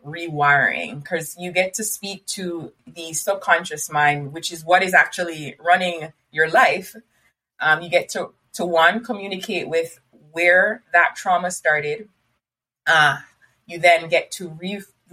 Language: English